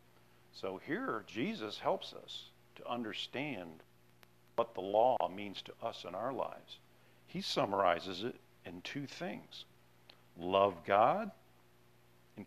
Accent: American